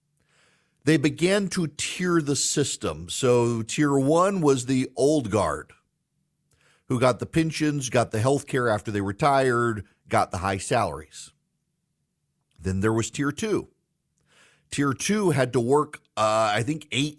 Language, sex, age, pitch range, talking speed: English, male, 50-69, 120-155 Hz, 145 wpm